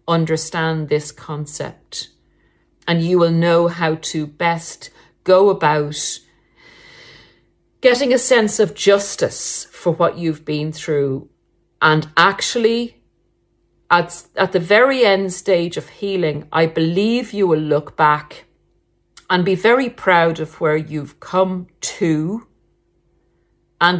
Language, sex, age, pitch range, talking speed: English, female, 50-69, 150-185 Hz, 120 wpm